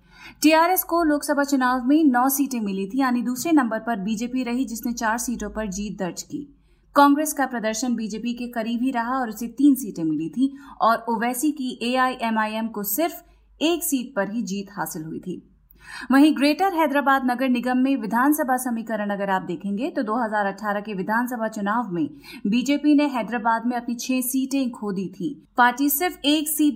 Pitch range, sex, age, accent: 215-270 Hz, female, 30-49, native